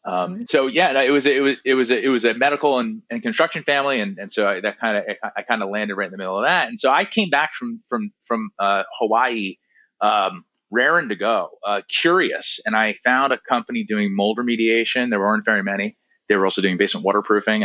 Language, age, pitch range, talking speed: English, 30-49, 100-140 Hz, 230 wpm